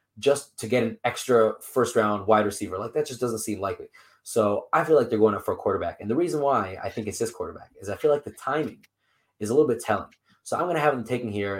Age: 20-39